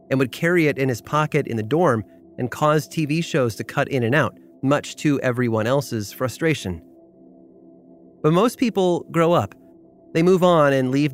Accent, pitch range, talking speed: American, 115-150 Hz, 185 wpm